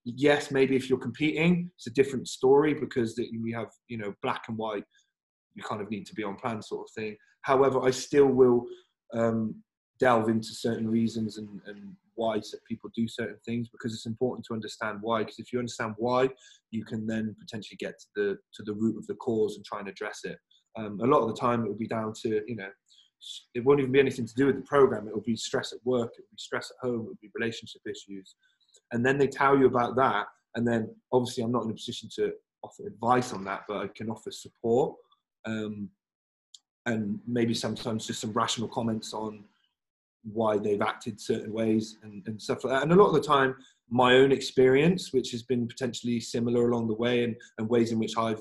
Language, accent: English, British